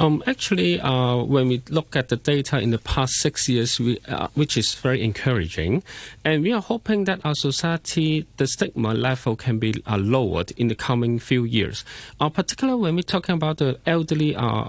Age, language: 40-59, English